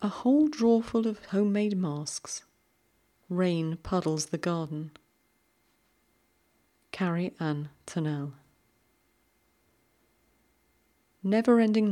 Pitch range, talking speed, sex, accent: 150-195 Hz, 70 wpm, female, British